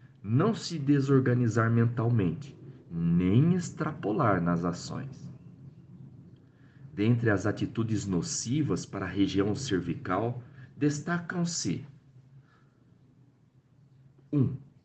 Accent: Brazilian